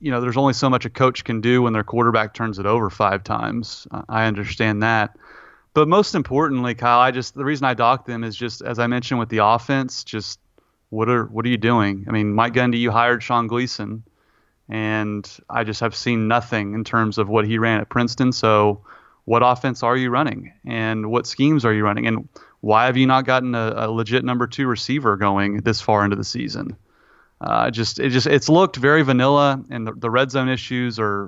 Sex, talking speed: male, 220 wpm